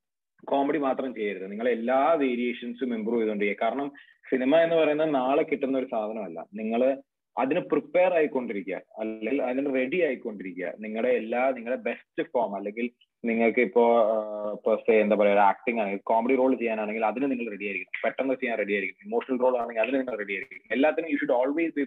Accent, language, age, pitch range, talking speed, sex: Indian, English, 30-49, 115-145 Hz, 185 wpm, male